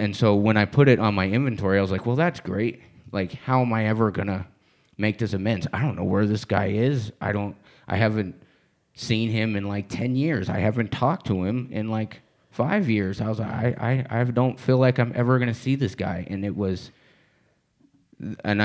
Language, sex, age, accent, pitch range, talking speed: English, male, 30-49, American, 95-115 Hz, 220 wpm